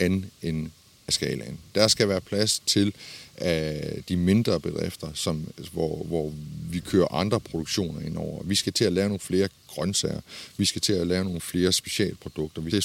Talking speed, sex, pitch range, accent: 175 wpm, male, 90-110 Hz, native